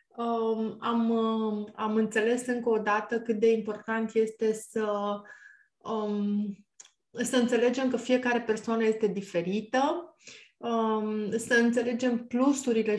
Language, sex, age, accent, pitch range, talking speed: Romanian, female, 20-39, native, 210-235 Hz, 95 wpm